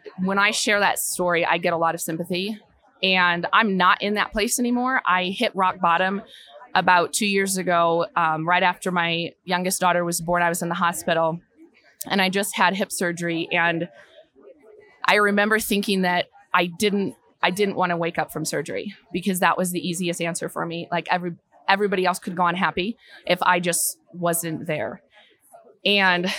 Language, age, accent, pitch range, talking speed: English, 20-39, American, 170-205 Hz, 185 wpm